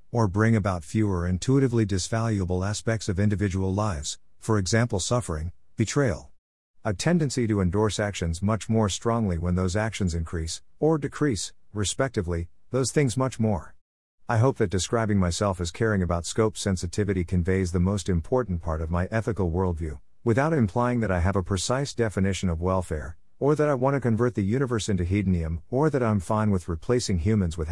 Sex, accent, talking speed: male, American, 175 wpm